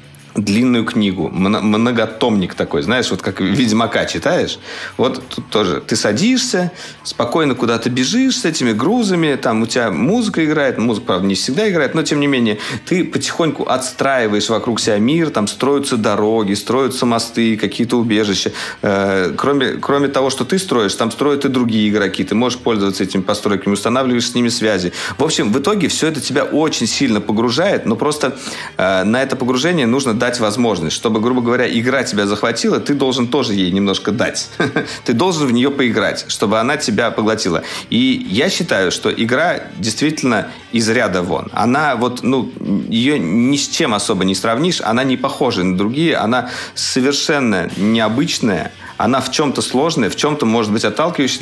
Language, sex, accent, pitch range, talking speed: Russian, male, native, 105-140 Hz, 165 wpm